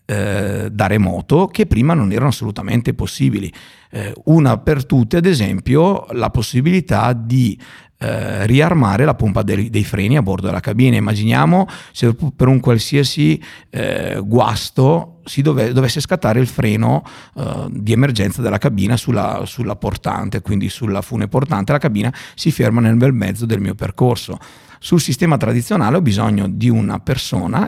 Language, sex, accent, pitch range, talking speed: Italian, male, native, 105-140 Hz, 155 wpm